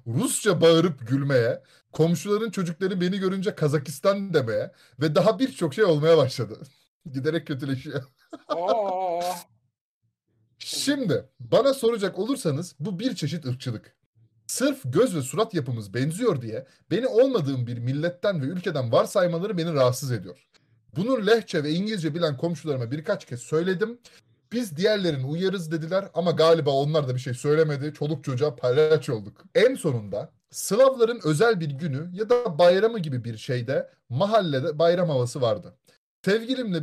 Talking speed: 135 wpm